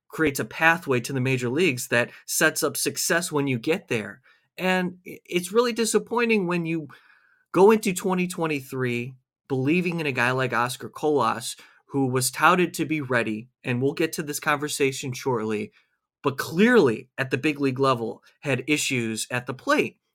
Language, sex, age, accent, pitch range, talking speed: English, male, 30-49, American, 130-175 Hz, 165 wpm